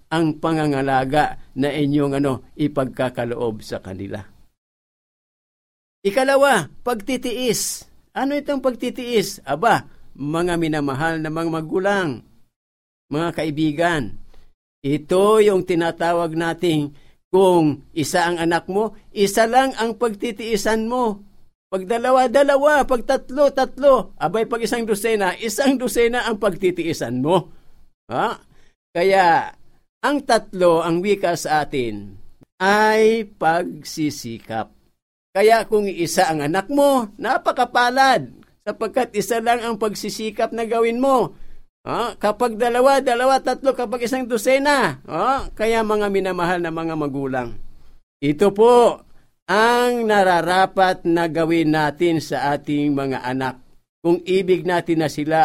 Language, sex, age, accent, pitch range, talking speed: Filipino, male, 50-69, native, 150-235 Hz, 110 wpm